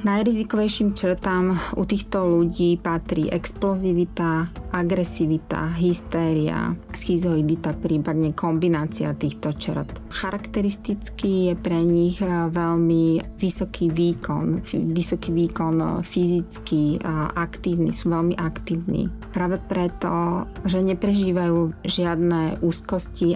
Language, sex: Slovak, female